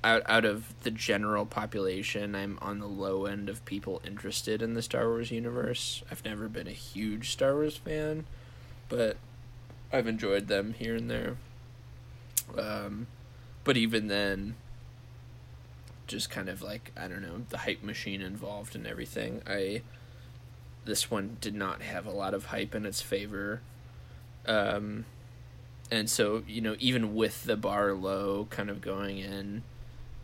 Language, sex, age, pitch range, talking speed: English, male, 20-39, 100-120 Hz, 155 wpm